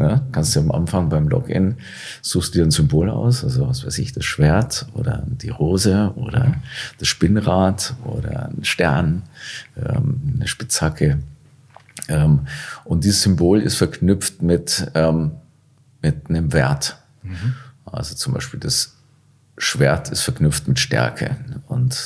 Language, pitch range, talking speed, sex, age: German, 85-135 Hz, 130 wpm, male, 40-59